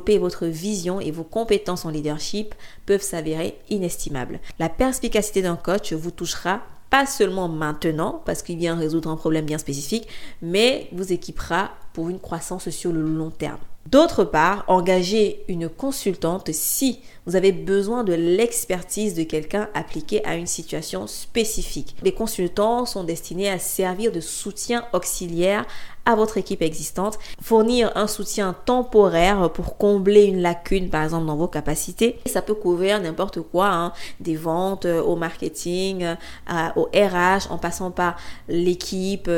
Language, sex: French, female